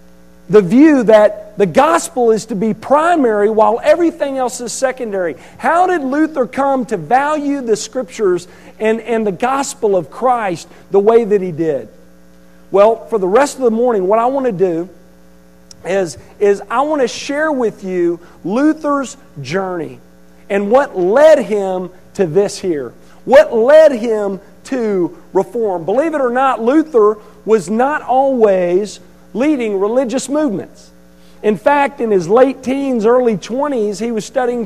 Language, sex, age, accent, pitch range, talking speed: English, male, 40-59, American, 190-270 Hz, 155 wpm